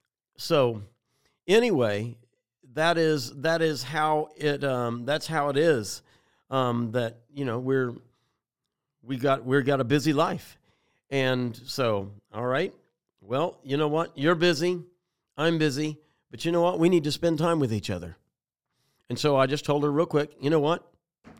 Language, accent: English, American